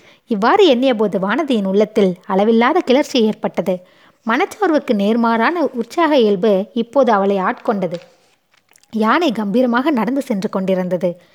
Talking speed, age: 105 wpm, 20-39